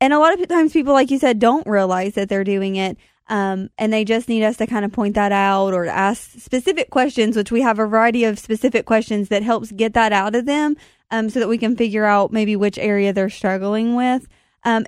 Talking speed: 245 wpm